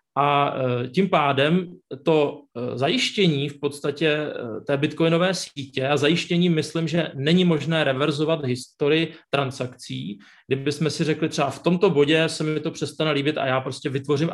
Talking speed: 145 wpm